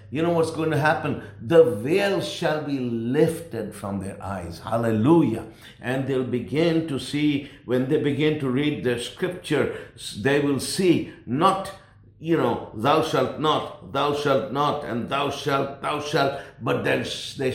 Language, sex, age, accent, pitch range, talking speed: English, male, 60-79, Indian, 120-155 Hz, 160 wpm